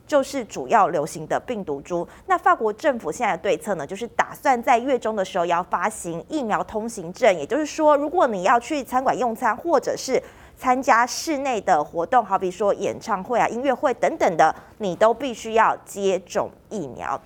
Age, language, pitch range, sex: 30-49, Chinese, 180-260 Hz, female